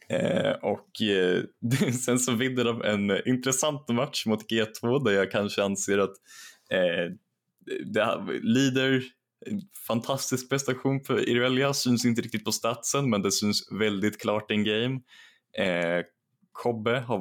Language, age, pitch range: Swedish, 20-39, 95-120 Hz